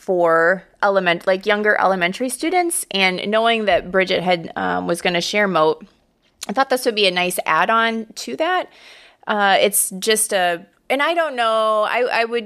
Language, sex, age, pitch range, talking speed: English, female, 20-39, 170-220 Hz, 180 wpm